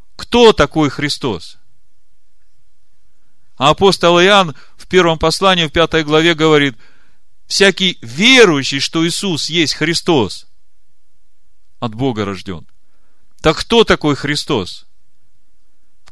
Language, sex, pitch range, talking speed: Russian, male, 125-170 Hz, 100 wpm